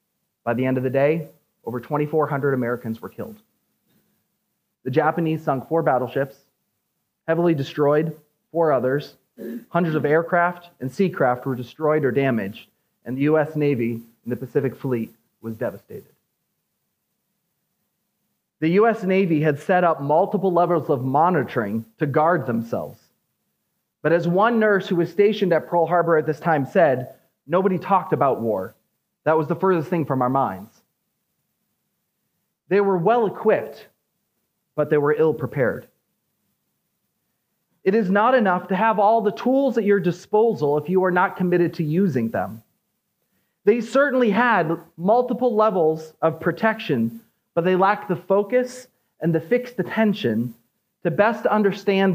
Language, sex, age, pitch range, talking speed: English, male, 30-49, 145-200 Hz, 145 wpm